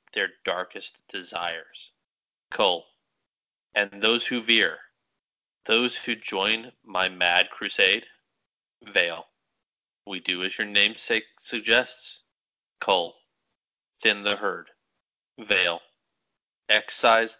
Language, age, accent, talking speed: English, 30-49, American, 95 wpm